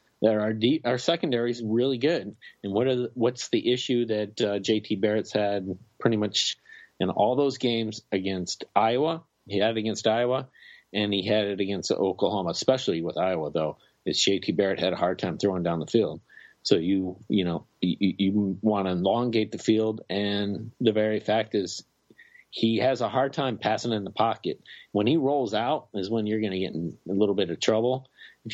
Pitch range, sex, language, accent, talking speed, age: 100-120 Hz, male, English, American, 200 wpm, 40-59